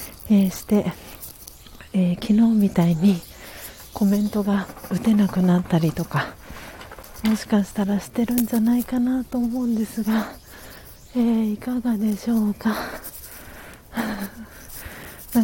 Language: Japanese